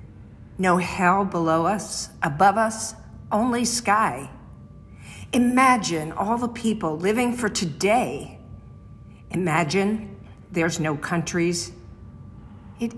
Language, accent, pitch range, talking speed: English, American, 145-200 Hz, 90 wpm